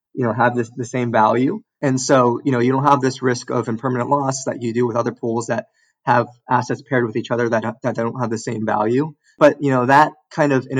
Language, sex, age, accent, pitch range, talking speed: English, male, 20-39, American, 115-135 Hz, 255 wpm